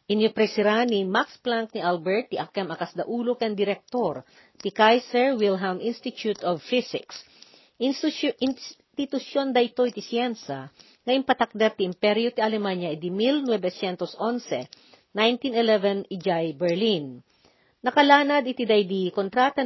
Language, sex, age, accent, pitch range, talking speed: Filipino, female, 40-59, native, 185-245 Hz, 115 wpm